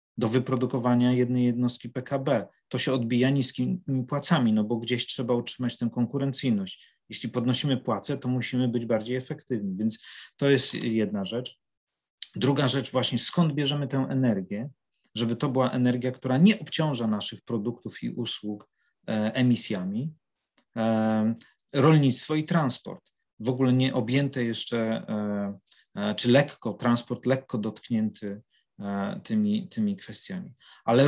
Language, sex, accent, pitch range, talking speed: Polish, male, native, 120-145 Hz, 125 wpm